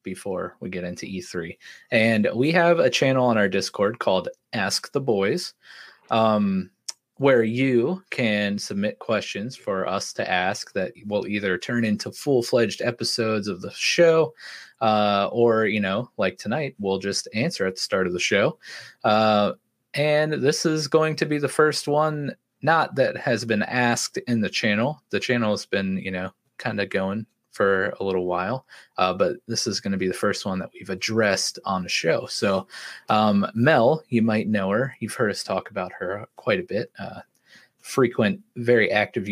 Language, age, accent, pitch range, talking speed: English, 20-39, American, 100-150 Hz, 180 wpm